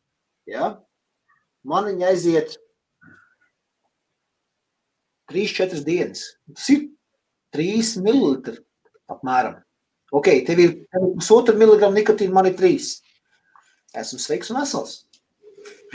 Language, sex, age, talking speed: English, male, 30-49, 90 wpm